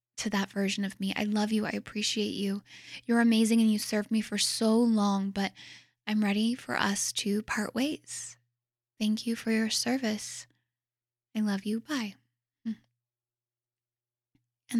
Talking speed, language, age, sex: 155 wpm, English, 10-29, female